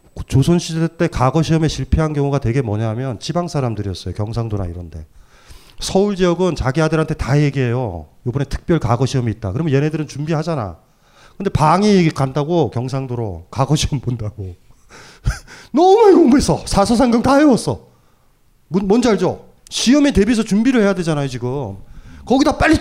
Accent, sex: native, male